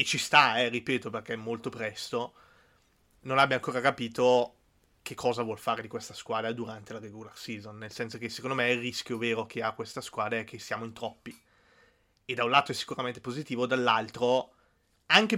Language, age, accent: Italian, 20-39, native